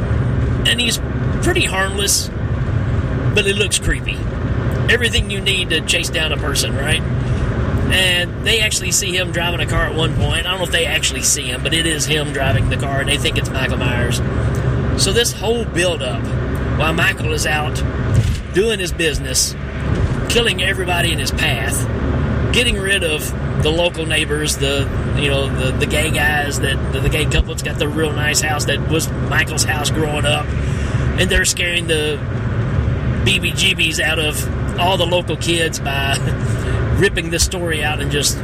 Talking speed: 175 wpm